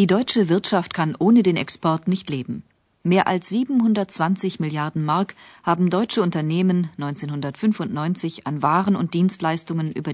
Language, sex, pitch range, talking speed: Bulgarian, female, 150-200 Hz, 135 wpm